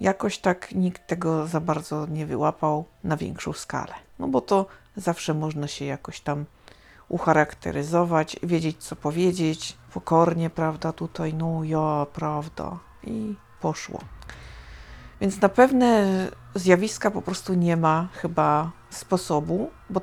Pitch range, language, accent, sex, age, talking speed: 160-200 Hz, Polish, native, female, 50-69, 125 wpm